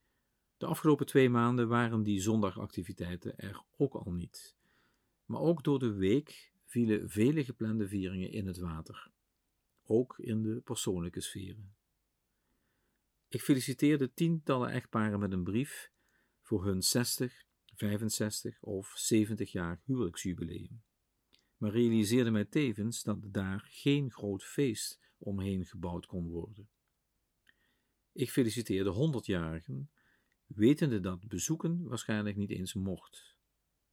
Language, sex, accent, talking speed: Dutch, male, Dutch, 115 wpm